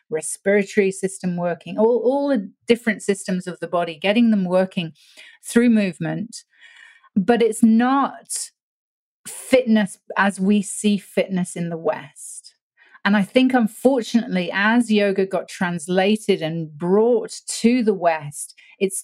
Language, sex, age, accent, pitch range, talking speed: English, female, 40-59, British, 175-220 Hz, 130 wpm